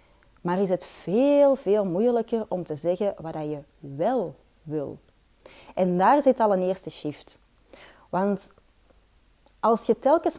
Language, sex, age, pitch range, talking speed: Dutch, female, 30-49, 180-250 Hz, 140 wpm